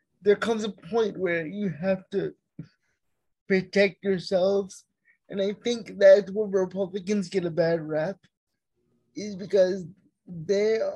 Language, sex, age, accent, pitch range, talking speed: English, male, 20-39, American, 180-210 Hz, 125 wpm